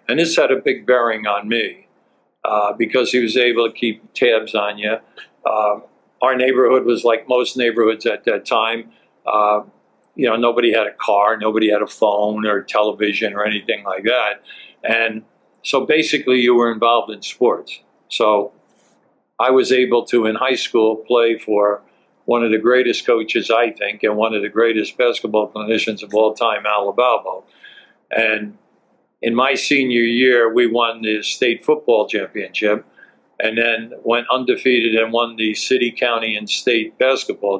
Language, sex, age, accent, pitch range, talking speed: English, male, 60-79, American, 110-125 Hz, 165 wpm